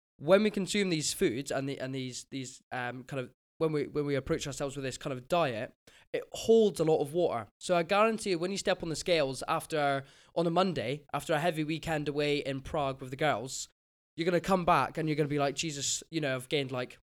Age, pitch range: 20-39, 140-170 Hz